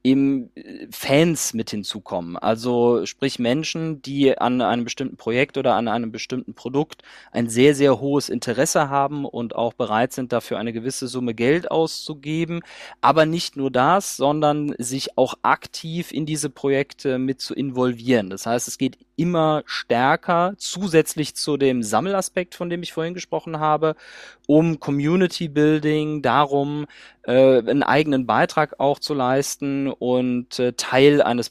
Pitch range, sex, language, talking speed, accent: 125-160 Hz, male, German, 145 wpm, German